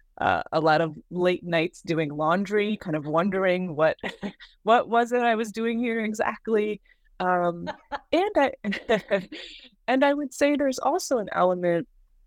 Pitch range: 165-220 Hz